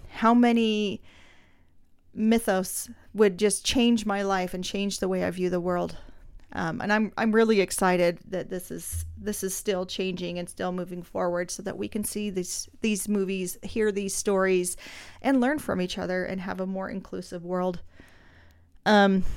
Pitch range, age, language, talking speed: 185-225 Hz, 40-59, English, 175 wpm